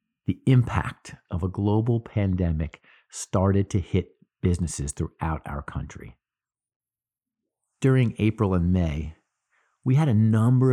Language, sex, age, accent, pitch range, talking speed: English, male, 50-69, American, 85-115 Hz, 115 wpm